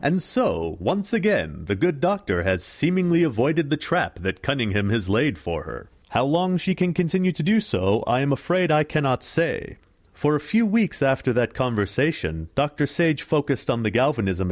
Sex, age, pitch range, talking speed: male, 40-59, 105-175 Hz, 185 wpm